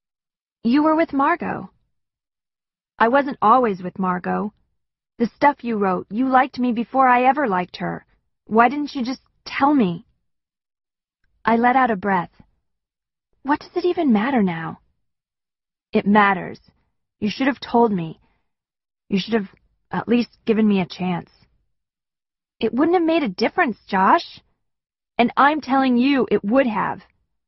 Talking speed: 150 wpm